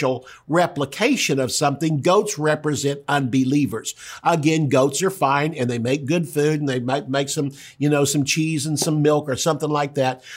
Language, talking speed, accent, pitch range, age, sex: English, 180 wpm, American, 130-155 Hz, 50-69, male